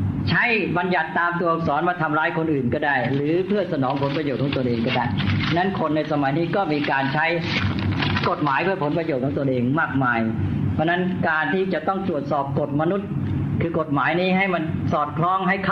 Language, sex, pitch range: Thai, female, 140-175 Hz